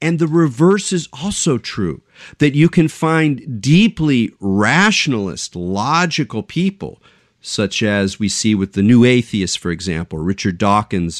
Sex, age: male, 40-59